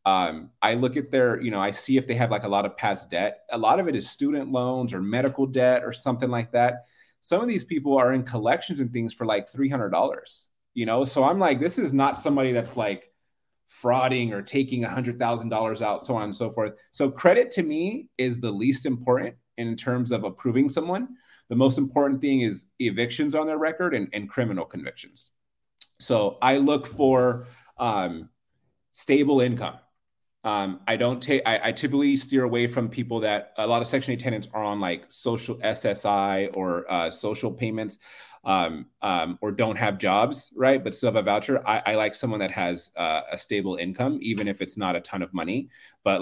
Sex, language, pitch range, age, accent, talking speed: male, English, 110-135 Hz, 30-49, American, 205 wpm